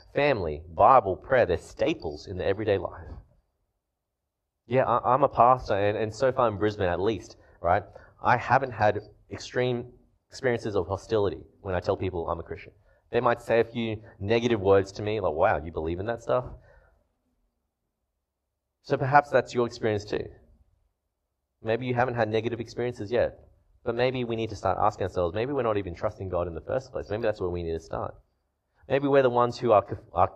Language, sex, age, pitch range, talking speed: English, male, 20-39, 85-115 Hz, 190 wpm